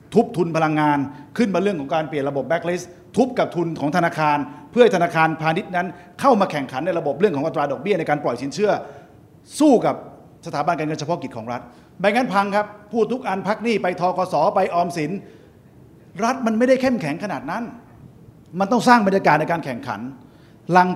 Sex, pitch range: male, 150-195 Hz